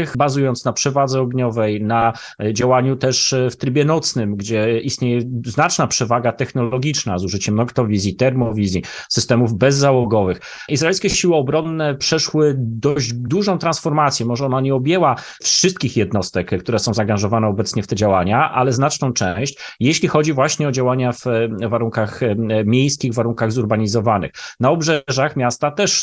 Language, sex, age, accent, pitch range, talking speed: Polish, male, 30-49, native, 120-150 Hz, 135 wpm